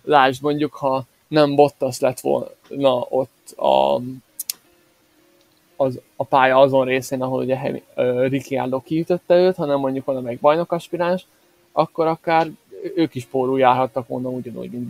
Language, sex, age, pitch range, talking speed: Hungarian, male, 20-39, 130-160 Hz, 135 wpm